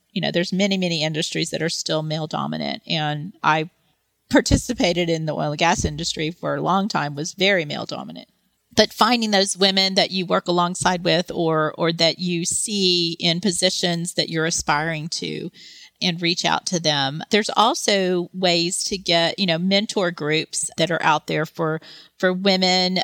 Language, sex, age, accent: English, female, 40-59, American